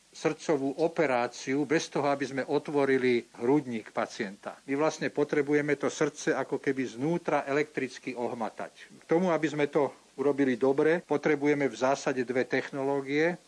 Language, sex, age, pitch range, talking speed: Slovak, male, 50-69, 130-150 Hz, 140 wpm